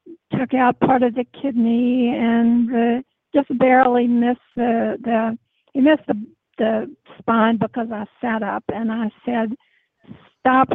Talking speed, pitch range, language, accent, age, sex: 140 wpm, 230-260 Hz, English, American, 60-79, female